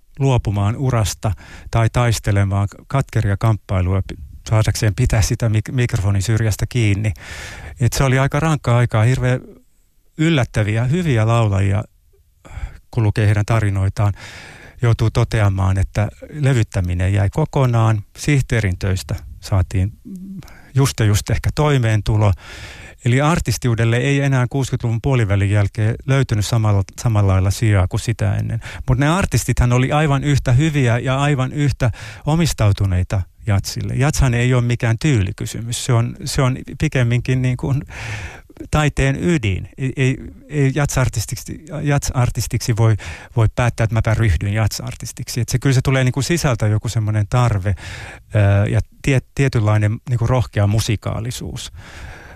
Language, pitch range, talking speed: Finnish, 105-130 Hz, 125 wpm